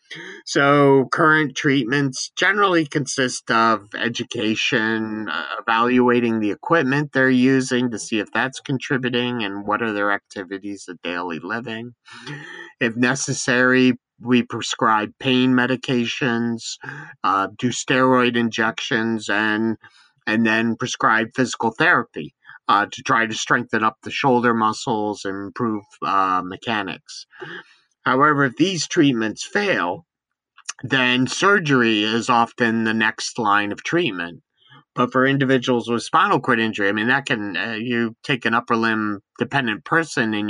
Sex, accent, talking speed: male, American, 130 wpm